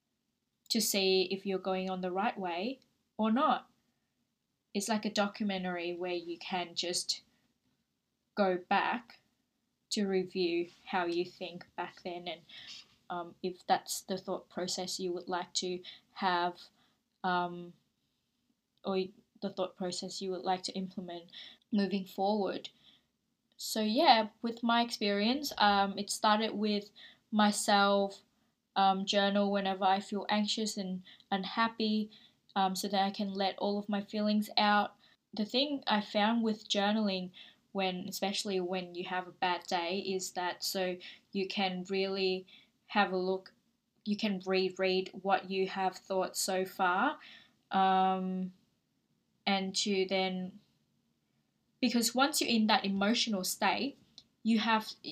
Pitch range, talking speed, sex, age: 185-215 Hz, 135 wpm, female, 20-39